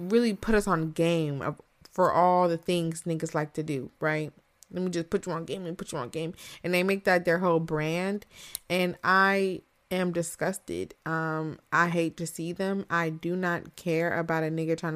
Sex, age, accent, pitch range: female, 20-39, American, 170-230 Hz